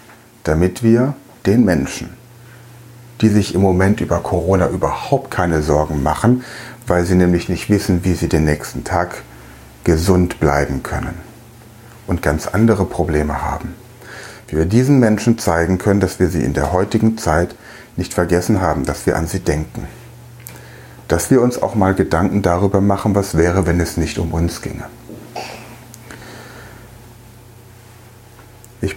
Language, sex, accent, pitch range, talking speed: German, male, German, 90-120 Hz, 145 wpm